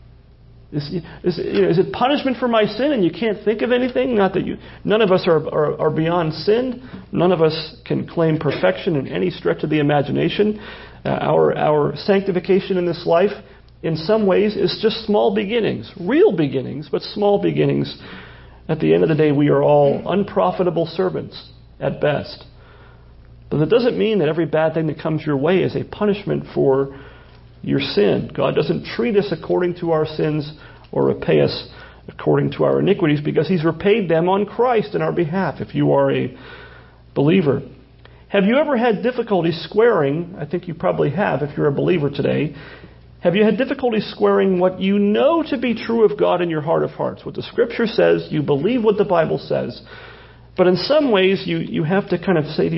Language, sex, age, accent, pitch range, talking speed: English, male, 40-59, American, 155-210 Hz, 195 wpm